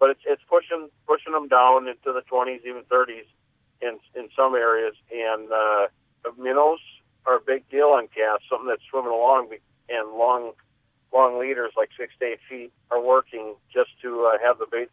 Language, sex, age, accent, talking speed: English, male, 50-69, American, 185 wpm